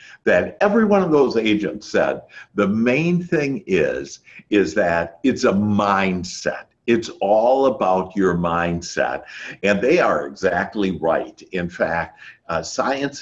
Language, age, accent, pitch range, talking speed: English, 60-79, American, 85-120 Hz, 135 wpm